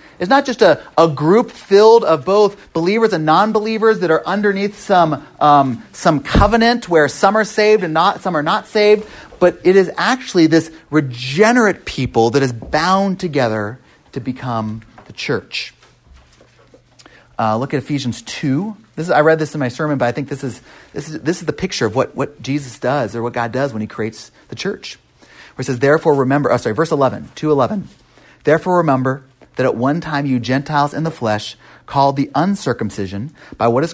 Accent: American